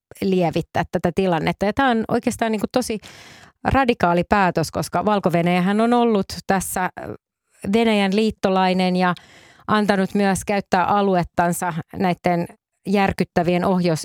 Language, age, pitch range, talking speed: Finnish, 30-49, 170-205 Hz, 100 wpm